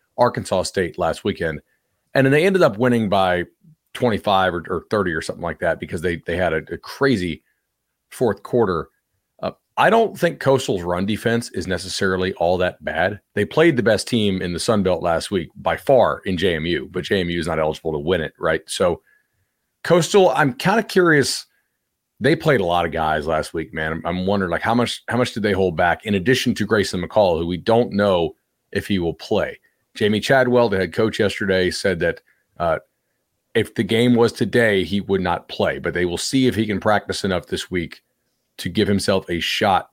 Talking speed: 205 wpm